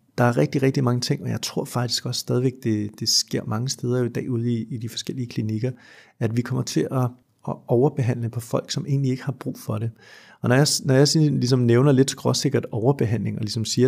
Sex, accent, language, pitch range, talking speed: male, native, Danish, 115-135 Hz, 240 wpm